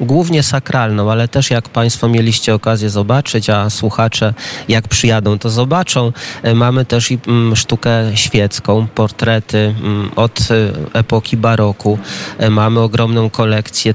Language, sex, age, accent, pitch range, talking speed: Polish, male, 30-49, native, 105-120 Hz, 110 wpm